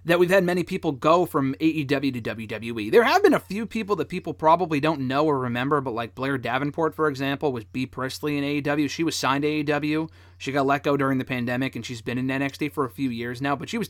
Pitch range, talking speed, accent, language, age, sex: 120-170 Hz, 255 wpm, American, English, 30-49, male